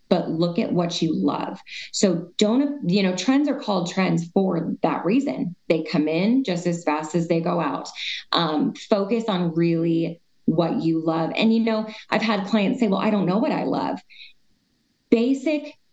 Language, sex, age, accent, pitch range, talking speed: English, female, 20-39, American, 175-235 Hz, 185 wpm